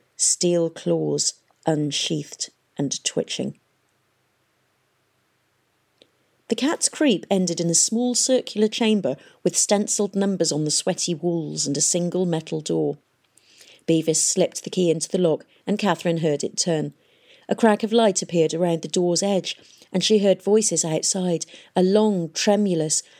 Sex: female